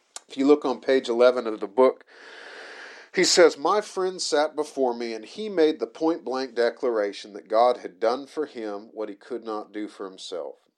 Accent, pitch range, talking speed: American, 110-135 Hz, 195 wpm